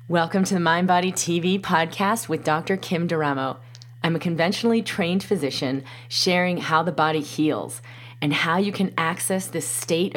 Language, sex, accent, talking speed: English, female, American, 165 wpm